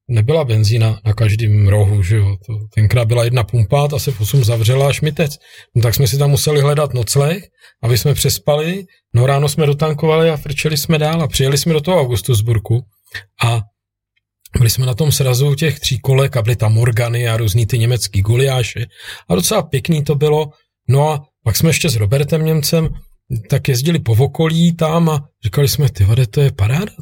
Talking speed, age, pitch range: 190 wpm, 40-59, 110-145 Hz